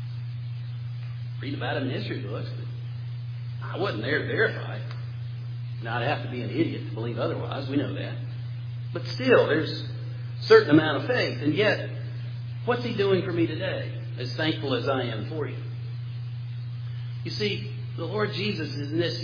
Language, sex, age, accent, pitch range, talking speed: English, male, 50-69, American, 120-130 Hz, 175 wpm